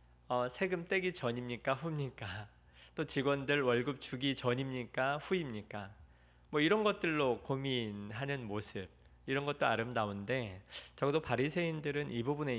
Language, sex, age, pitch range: Korean, male, 20-39, 100-135 Hz